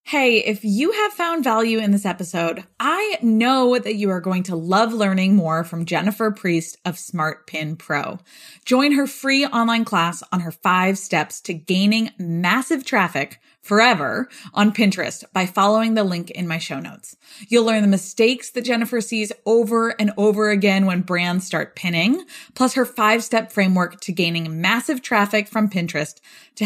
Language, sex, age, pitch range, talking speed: English, female, 20-39, 180-225 Hz, 170 wpm